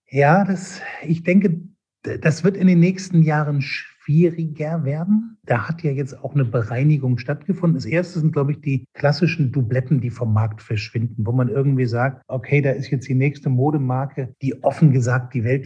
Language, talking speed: German, 185 wpm